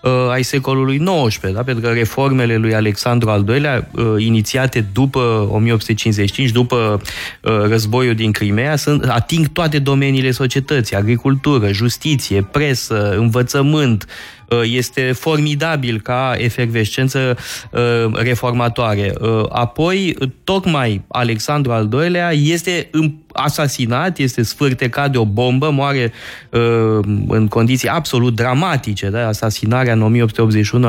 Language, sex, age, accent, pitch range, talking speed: Romanian, male, 20-39, native, 110-140 Hz, 105 wpm